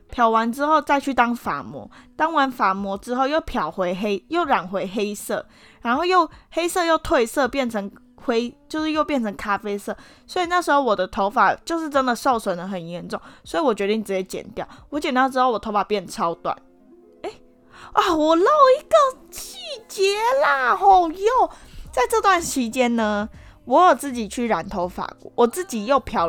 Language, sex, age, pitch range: Chinese, female, 10-29, 195-290 Hz